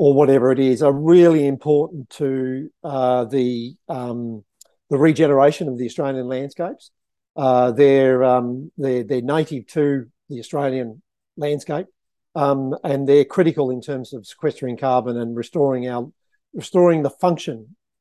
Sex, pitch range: male, 130-150 Hz